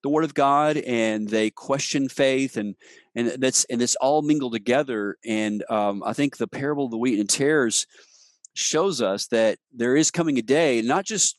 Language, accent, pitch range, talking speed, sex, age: English, American, 110-140 Hz, 195 wpm, male, 40-59